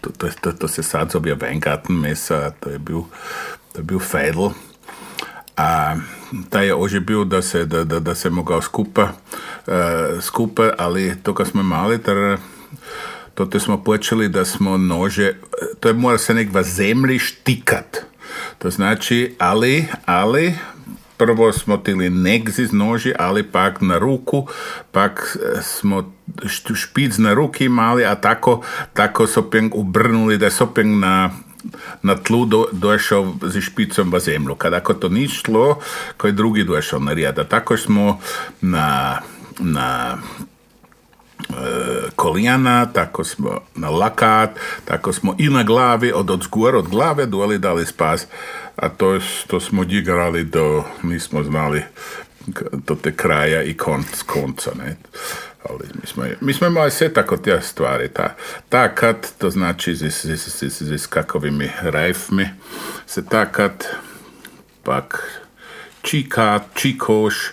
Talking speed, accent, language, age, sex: 130 wpm, Czech, Croatian, 50-69, male